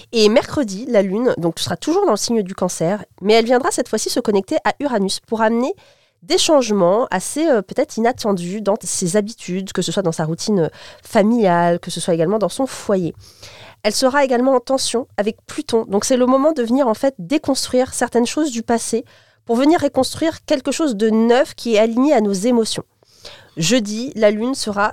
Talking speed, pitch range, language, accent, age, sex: 200 wpm, 205-270 Hz, French, French, 30-49, female